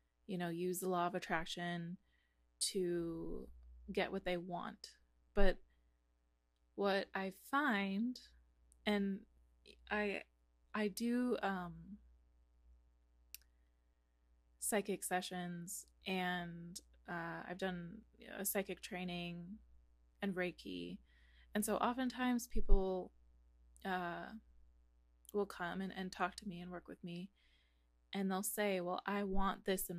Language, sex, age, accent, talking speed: English, female, 20-39, American, 115 wpm